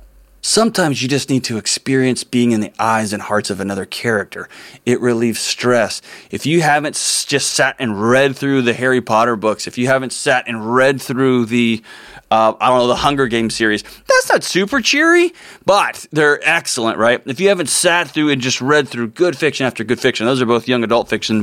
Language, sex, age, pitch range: English, male, 20-39, 115-155 Hz